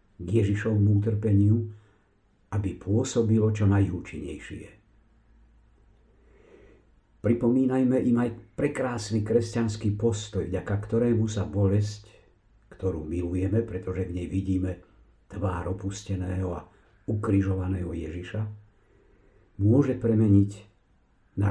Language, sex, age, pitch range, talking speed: Slovak, male, 50-69, 100-110 Hz, 85 wpm